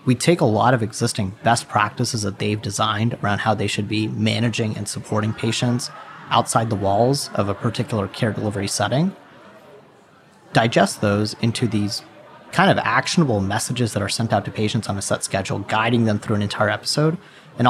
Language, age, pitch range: English, 30-49, 105-130 Hz